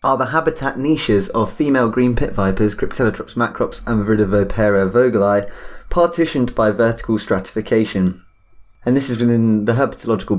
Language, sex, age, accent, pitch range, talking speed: English, male, 20-39, British, 100-115 Hz, 145 wpm